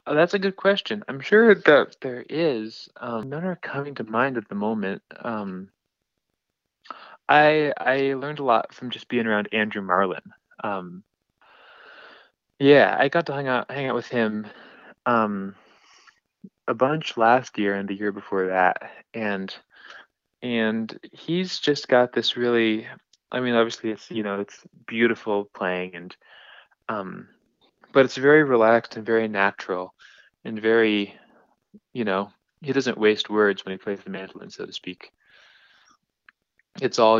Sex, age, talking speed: male, 20-39, 155 wpm